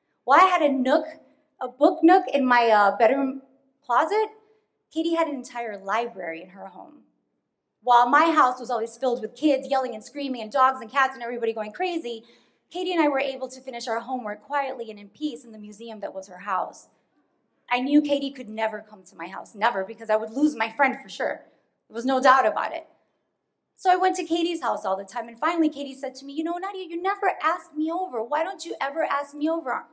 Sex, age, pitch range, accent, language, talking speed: female, 20-39, 225-310 Hz, American, English, 230 wpm